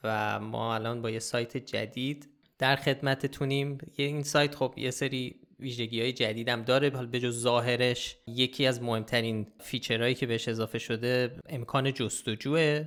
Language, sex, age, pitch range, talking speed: Persian, male, 20-39, 115-135 Hz, 155 wpm